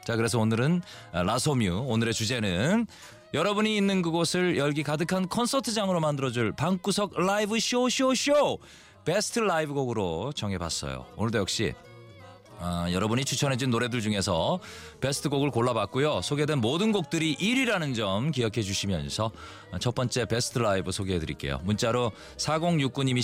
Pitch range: 100-155 Hz